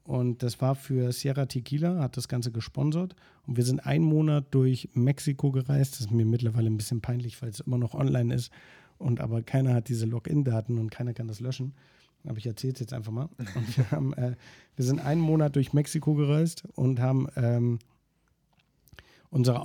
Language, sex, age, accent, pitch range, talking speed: German, male, 50-69, German, 125-150 Hz, 195 wpm